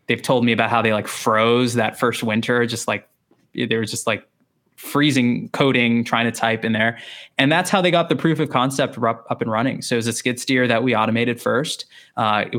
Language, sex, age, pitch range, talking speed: English, male, 20-39, 110-130 Hz, 225 wpm